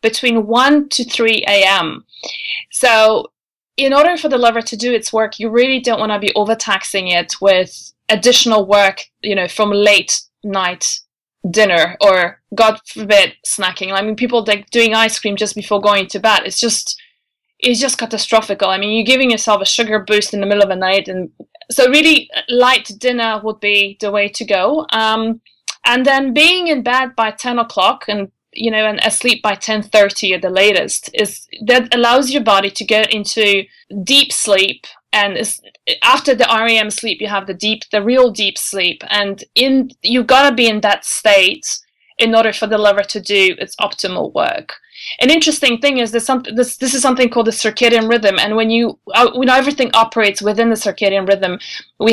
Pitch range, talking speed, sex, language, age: 205-245 Hz, 190 wpm, female, English, 20-39